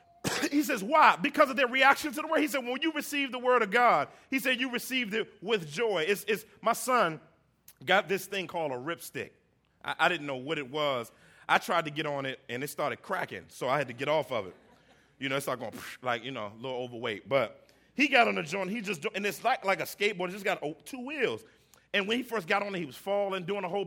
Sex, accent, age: male, American, 40-59